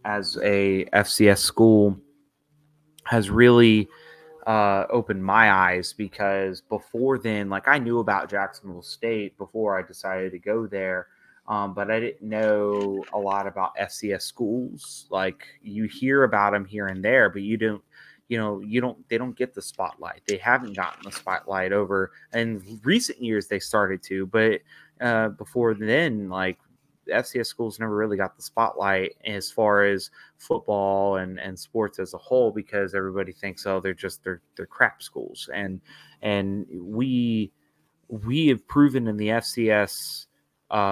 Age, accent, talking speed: 20-39, American, 160 wpm